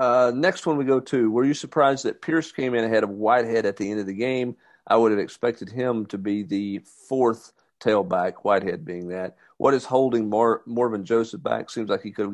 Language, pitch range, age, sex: English, 100-125 Hz, 50-69, male